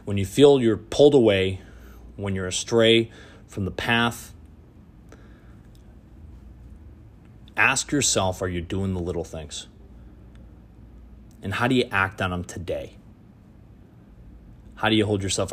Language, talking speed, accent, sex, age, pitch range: English, 130 wpm, American, male, 30-49, 90-110 Hz